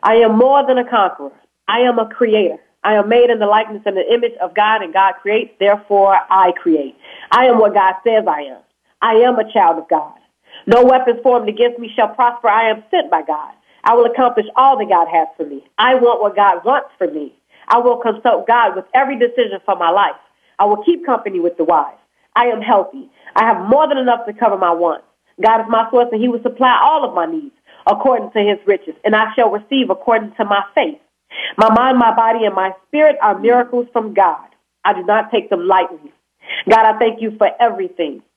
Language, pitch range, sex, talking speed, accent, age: English, 195-240 Hz, female, 225 wpm, American, 40-59